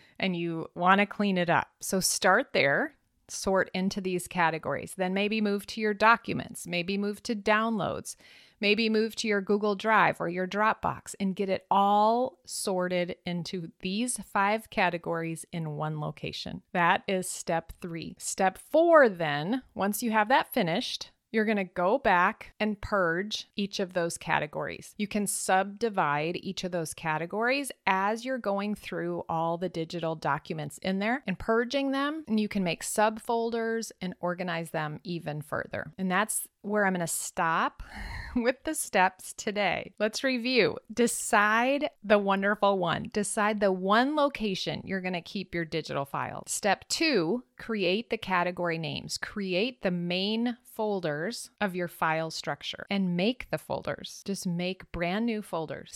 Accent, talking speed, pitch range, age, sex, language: American, 160 wpm, 180-220 Hz, 30-49, female, English